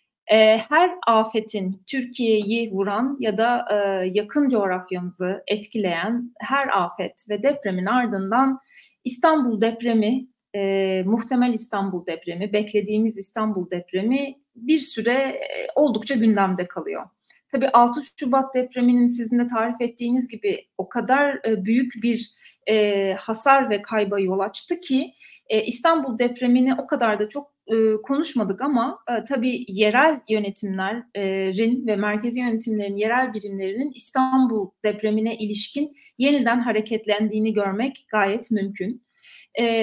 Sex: female